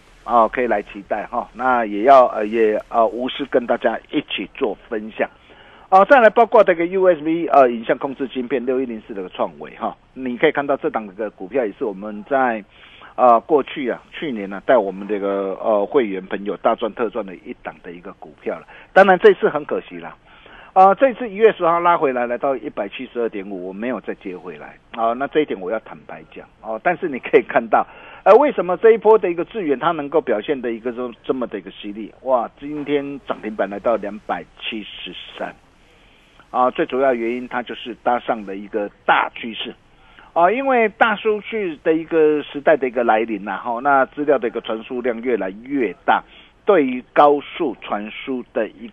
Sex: male